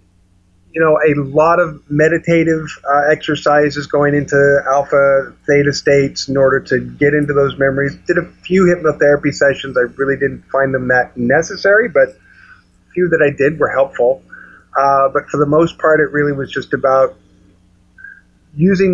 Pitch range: 135-155 Hz